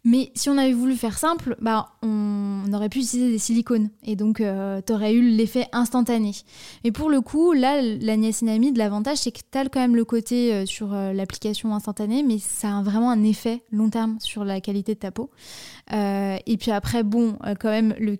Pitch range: 200-235 Hz